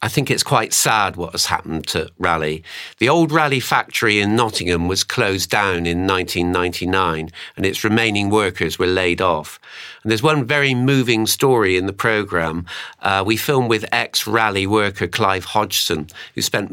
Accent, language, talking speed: British, English, 165 wpm